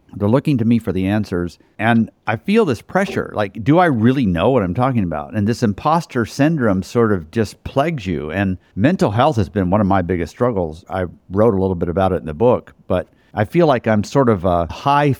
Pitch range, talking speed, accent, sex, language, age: 100-135 Hz, 235 wpm, American, male, English, 50-69